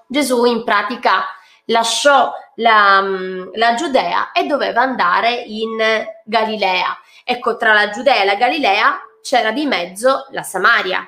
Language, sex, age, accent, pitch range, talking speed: Italian, female, 20-39, native, 210-275 Hz, 130 wpm